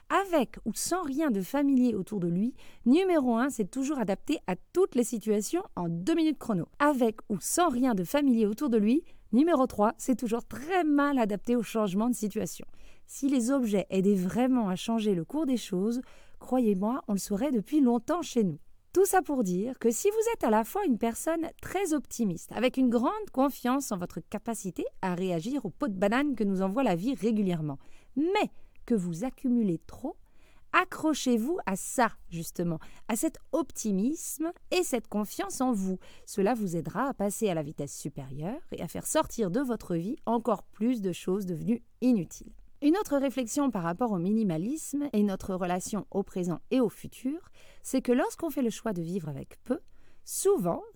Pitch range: 200-275 Hz